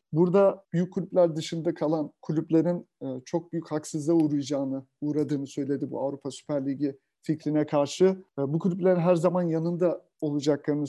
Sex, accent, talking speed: male, native, 130 wpm